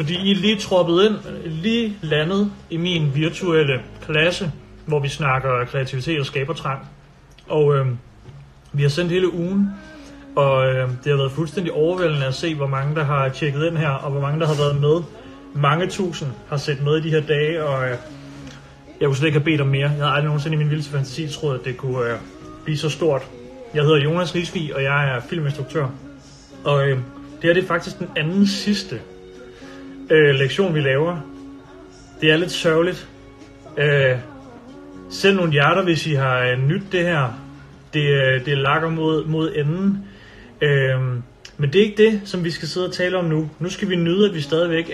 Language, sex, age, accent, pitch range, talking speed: Danish, male, 30-49, native, 135-170 Hz, 195 wpm